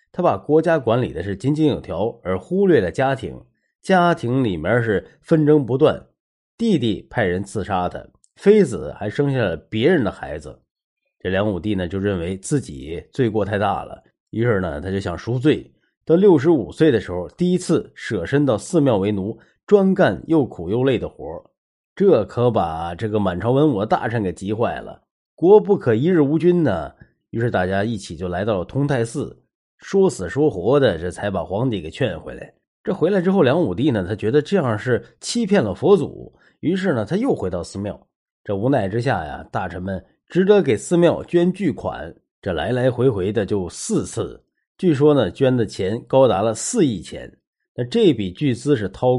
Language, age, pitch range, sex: Chinese, 30-49, 100-155 Hz, male